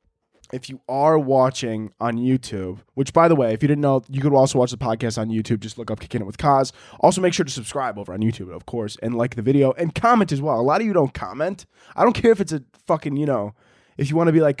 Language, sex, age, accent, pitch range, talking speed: English, male, 20-39, American, 125-170 Hz, 280 wpm